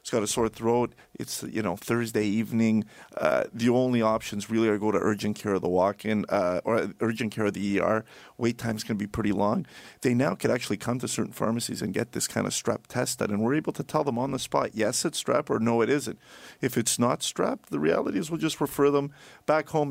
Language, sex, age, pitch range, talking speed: English, male, 40-59, 105-130 Hz, 245 wpm